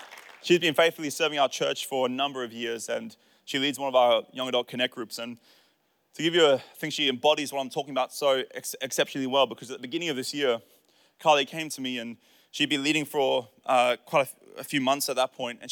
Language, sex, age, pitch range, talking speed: English, male, 20-39, 130-155 Hz, 245 wpm